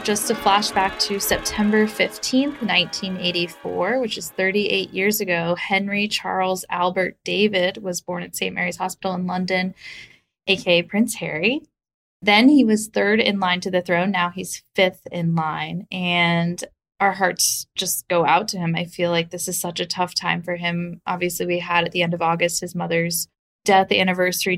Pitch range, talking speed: 175-200 Hz, 175 wpm